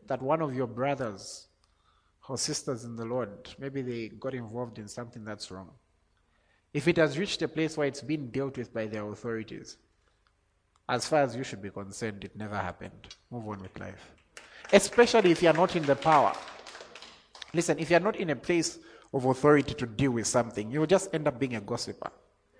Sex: male